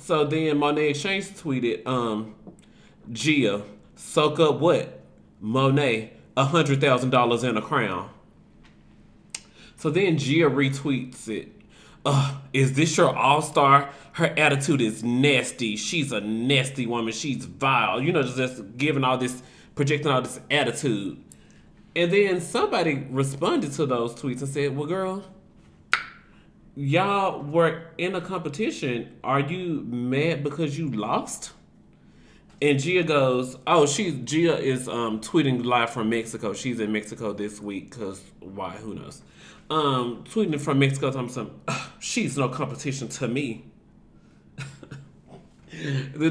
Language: English